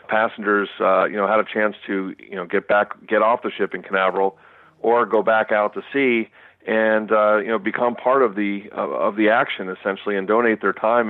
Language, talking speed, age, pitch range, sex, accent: English, 215 wpm, 40-59, 100-110 Hz, male, American